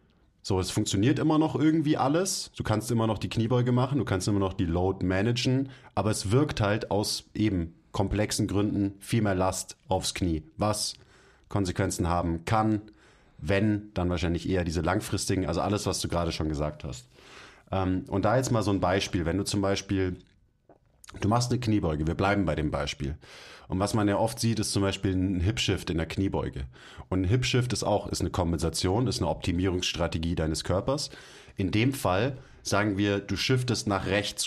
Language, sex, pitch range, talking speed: German, male, 95-110 Hz, 185 wpm